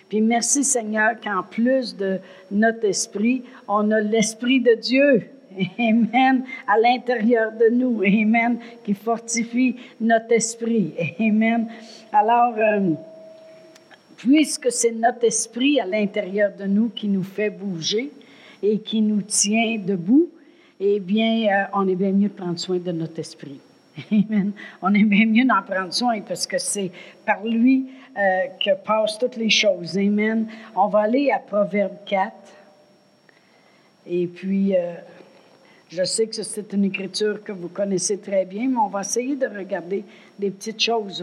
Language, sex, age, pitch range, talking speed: French, female, 60-79, 190-235 Hz, 155 wpm